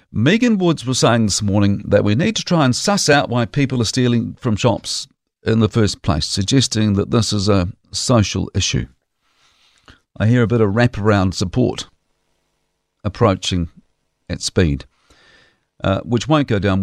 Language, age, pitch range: English, 50-69, 100-125 Hz